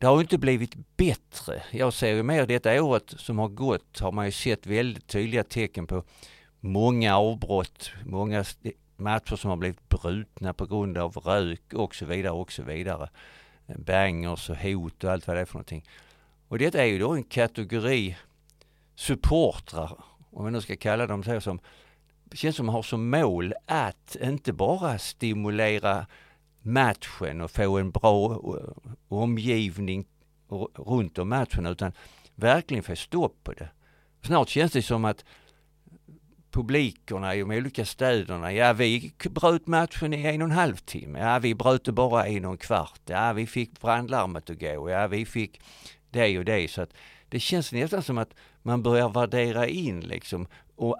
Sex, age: male, 50-69